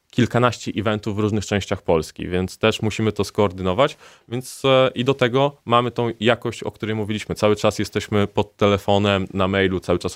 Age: 20-39